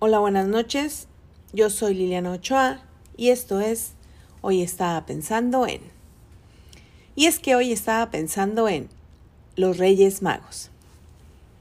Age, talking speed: 40-59, 125 wpm